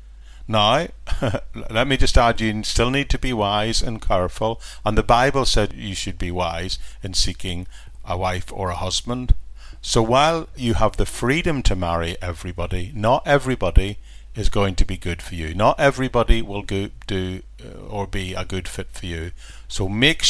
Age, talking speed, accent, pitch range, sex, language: 50-69, 175 wpm, British, 90-115 Hz, male, English